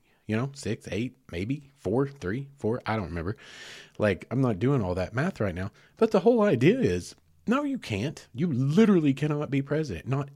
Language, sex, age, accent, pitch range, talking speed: English, male, 40-59, American, 100-145 Hz, 195 wpm